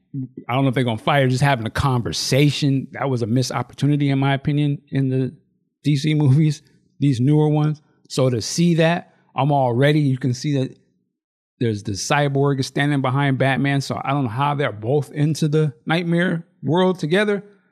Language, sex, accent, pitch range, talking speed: English, male, American, 135-160 Hz, 190 wpm